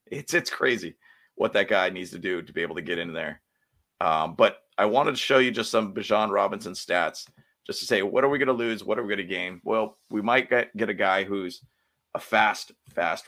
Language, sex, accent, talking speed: English, male, American, 245 wpm